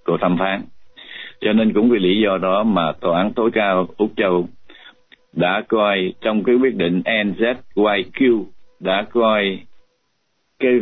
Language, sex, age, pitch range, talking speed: Vietnamese, male, 60-79, 90-115 Hz, 145 wpm